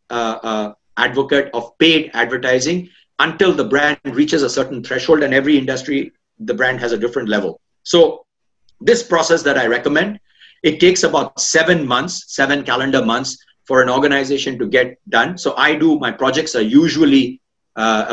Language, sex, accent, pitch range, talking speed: English, male, Indian, 125-160 Hz, 165 wpm